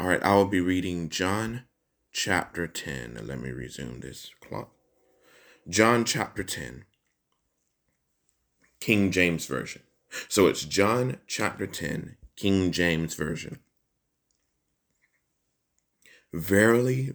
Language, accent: English, American